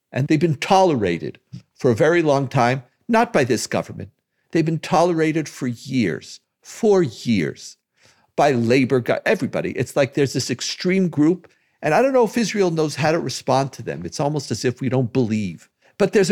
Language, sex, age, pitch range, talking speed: English, male, 50-69, 125-180 Hz, 185 wpm